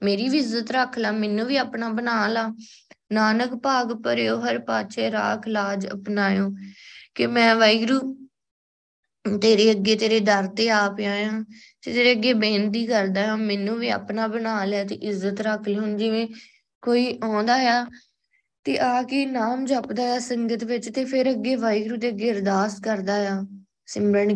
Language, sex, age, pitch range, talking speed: Punjabi, female, 20-39, 200-250 Hz, 160 wpm